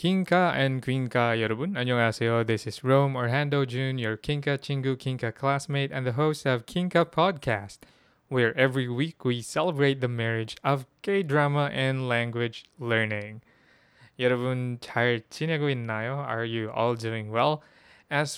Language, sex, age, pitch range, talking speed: English, male, 20-39, 120-135 Hz, 145 wpm